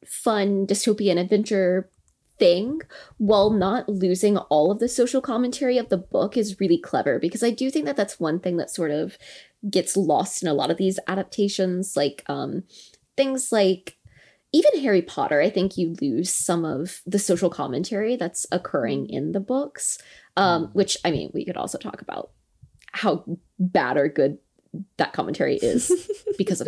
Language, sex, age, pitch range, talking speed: English, female, 20-39, 175-235 Hz, 170 wpm